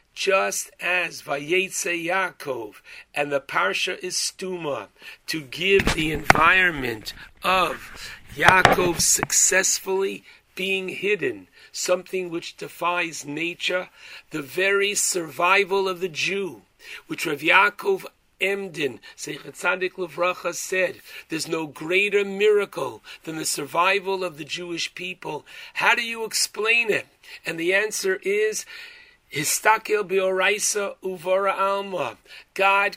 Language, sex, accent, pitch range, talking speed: English, male, American, 175-210 Hz, 100 wpm